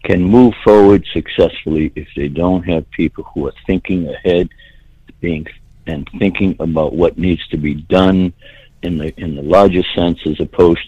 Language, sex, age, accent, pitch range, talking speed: English, male, 60-79, American, 90-110 Hz, 160 wpm